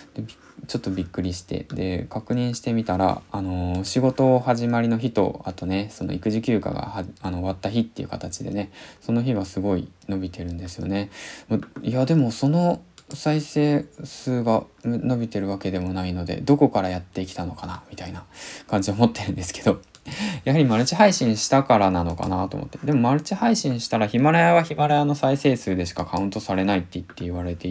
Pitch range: 95-135 Hz